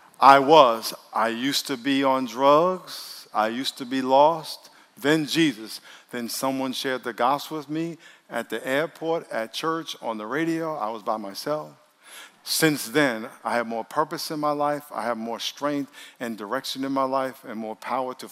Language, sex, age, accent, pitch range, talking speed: English, male, 50-69, American, 135-180 Hz, 185 wpm